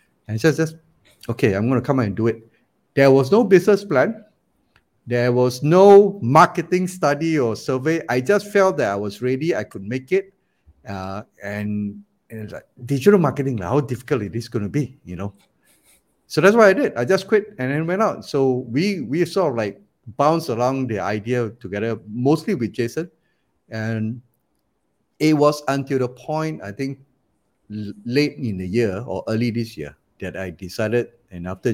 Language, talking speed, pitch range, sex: English, 185 wpm, 105-150 Hz, male